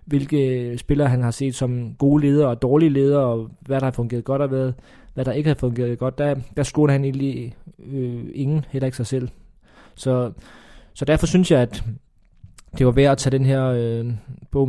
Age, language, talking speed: 20-39, Danish, 200 wpm